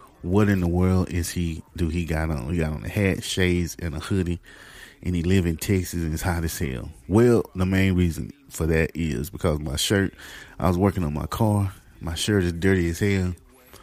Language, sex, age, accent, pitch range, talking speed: English, male, 30-49, American, 85-105 Hz, 220 wpm